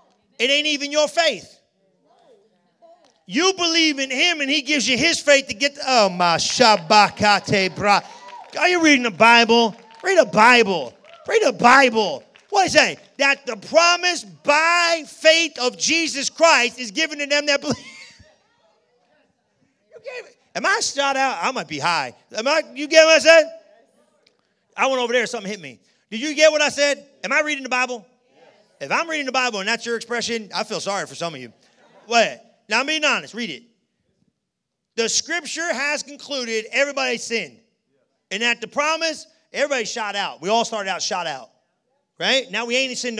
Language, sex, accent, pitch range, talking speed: English, male, American, 230-300 Hz, 180 wpm